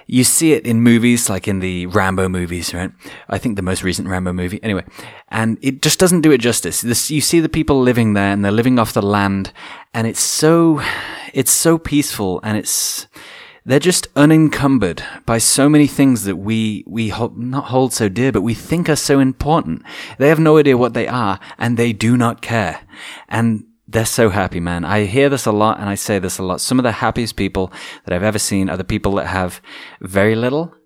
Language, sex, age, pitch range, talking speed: English, male, 20-39, 95-120 Hz, 220 wpm